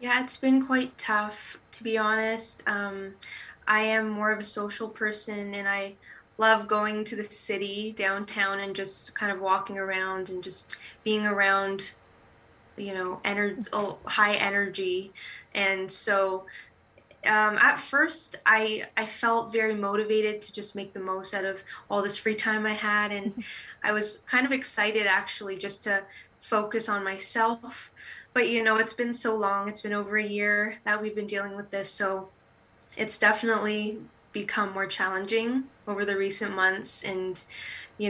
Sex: female